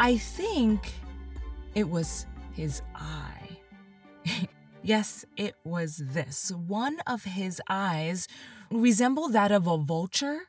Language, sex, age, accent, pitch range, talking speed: English, female, 20-39, American, 160-235 Hz, 110 wpm